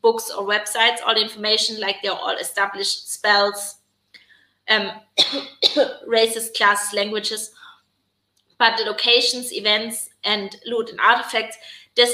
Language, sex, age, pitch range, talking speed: English, female, 20-39, 215-250 Hz, 120 wpm